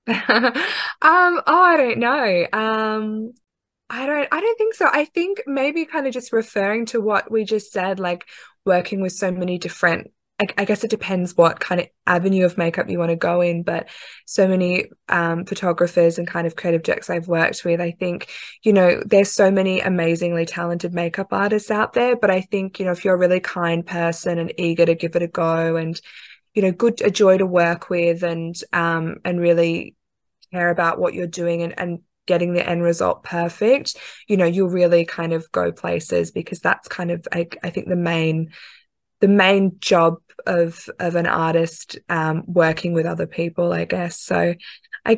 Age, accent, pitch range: 20-39, Australian, 170-210 Hz